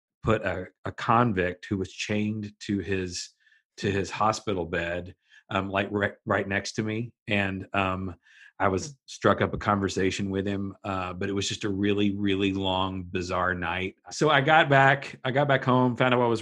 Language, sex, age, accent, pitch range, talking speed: English, male, 40-59, American, 95-110 Hz, 195 wpm